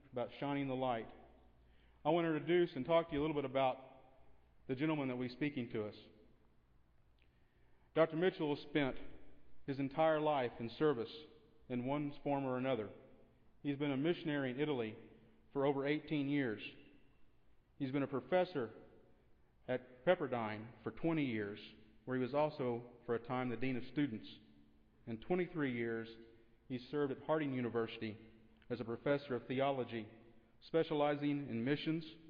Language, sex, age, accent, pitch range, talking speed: English, male, 40-59, American, 115-145 Hz, 155 wpm